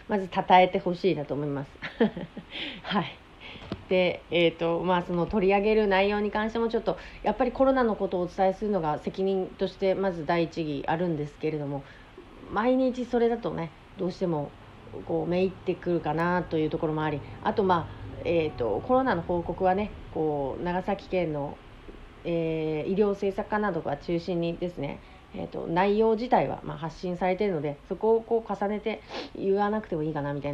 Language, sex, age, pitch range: Japanese, female, 40-59, 155-195 Hz